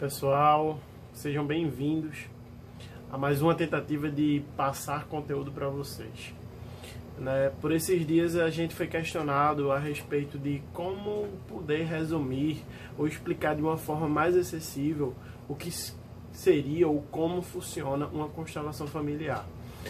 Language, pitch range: English, 140-170 Hz